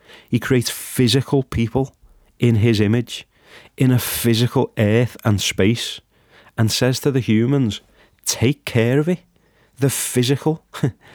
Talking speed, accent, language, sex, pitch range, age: 130 wpm, British, English, male, 105-120 Hz, 30-49